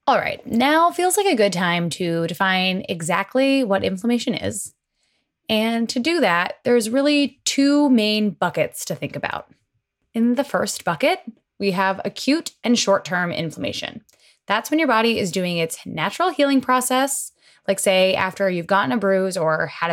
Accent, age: American, 10-29